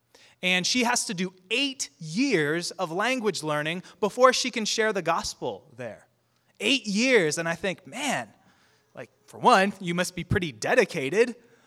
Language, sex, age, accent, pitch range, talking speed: English, male, 20-39, American, 145-210 Hz, 160 wpm